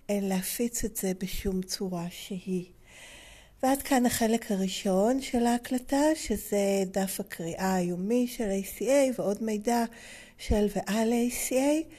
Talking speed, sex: 115 wpm, female